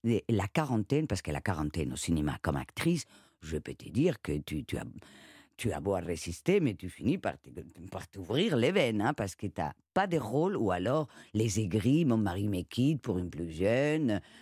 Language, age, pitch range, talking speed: French, 50-69, 85-145 Hz, 205 wpm